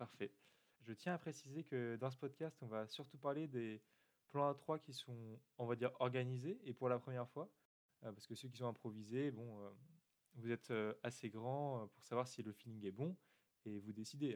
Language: French